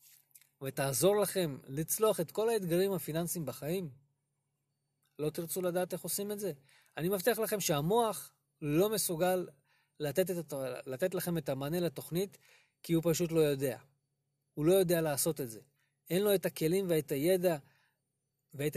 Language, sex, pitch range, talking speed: Hebrew, male, 140-195 Hz, 145 wpm